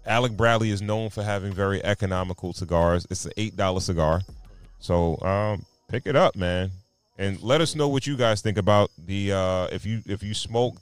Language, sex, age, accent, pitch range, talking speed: English, male, 30-49, American, 90-110 Hz, 195 wpm